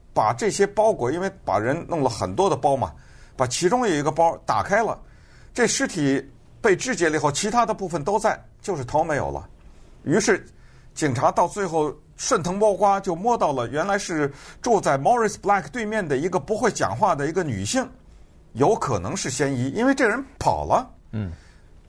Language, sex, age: Chinese, male, 50-69